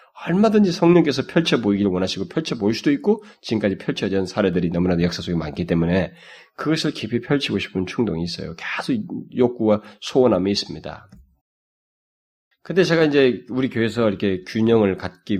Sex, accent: male, native